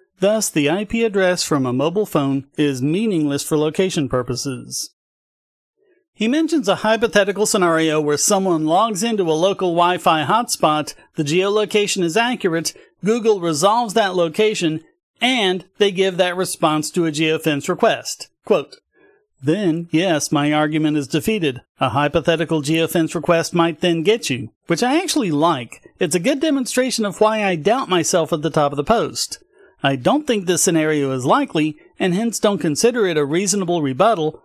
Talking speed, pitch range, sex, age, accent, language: 160 wpm, 160-215 Hz, male, 40-59, American, English